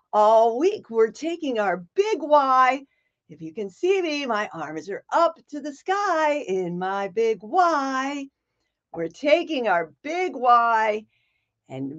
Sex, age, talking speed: female, 50-69, 145 wpm